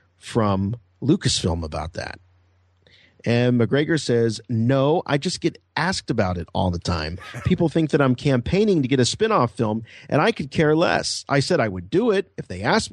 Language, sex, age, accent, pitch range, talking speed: English, male, 40-59, American, 105-150 Hz, 190 wpm